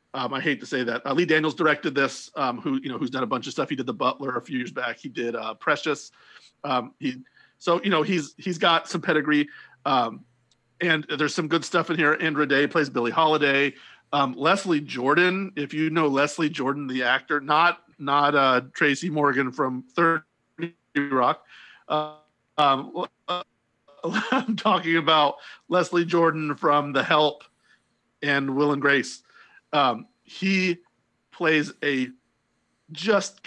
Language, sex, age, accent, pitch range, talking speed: English, male, 40-59, American, 135-170 Hz, 165 wpm